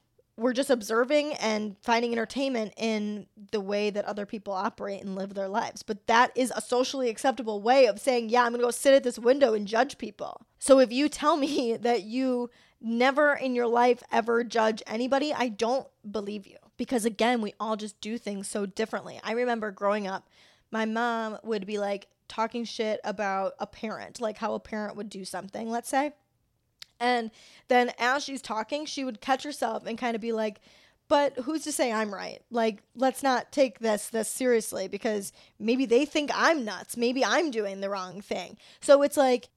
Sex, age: female, 10-29